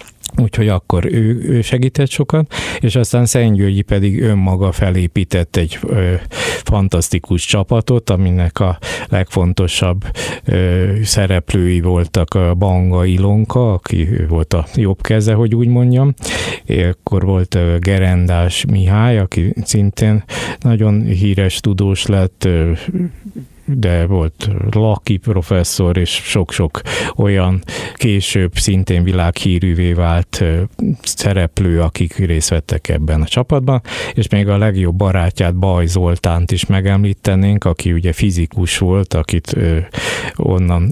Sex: male